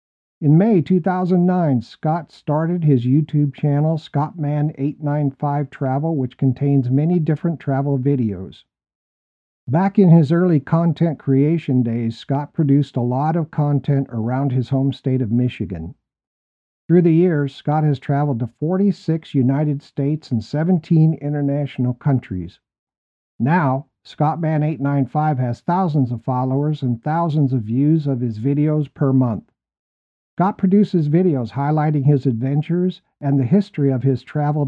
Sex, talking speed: male, 130 wpm